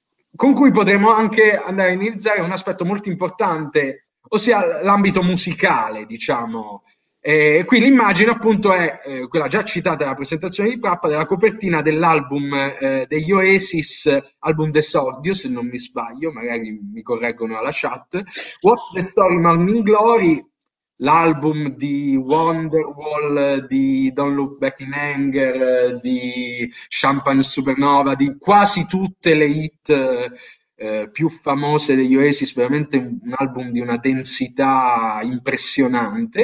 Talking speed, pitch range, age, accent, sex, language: 130 wpm, 135-205 Hz, 30-49, native, male, Italian